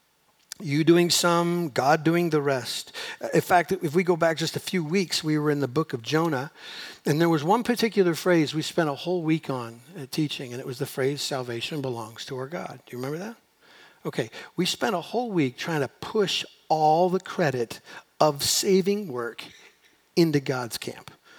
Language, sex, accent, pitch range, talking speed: English, male, American, 145-215 Hz, 195 wpm